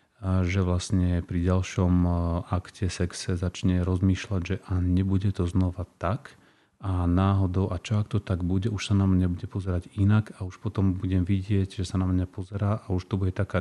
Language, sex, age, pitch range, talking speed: Slovak, male, 30-49, 90-95 Hz, 195 wpm